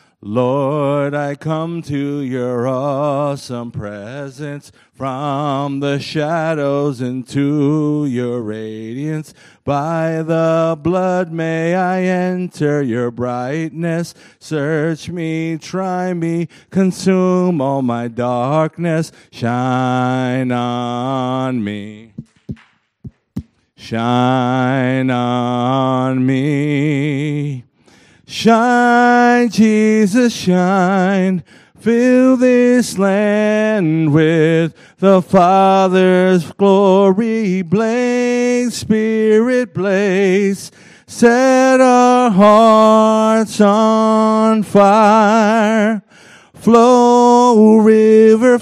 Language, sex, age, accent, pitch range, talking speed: English, male, 40-59, American, 145-220 Hz, 70 wpm